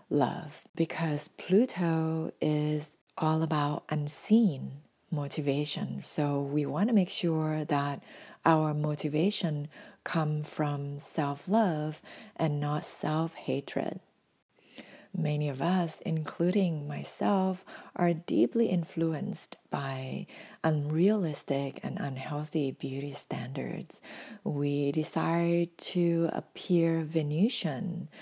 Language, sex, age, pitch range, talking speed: English, female, 40-59, 150-180 Hz, 95 wpm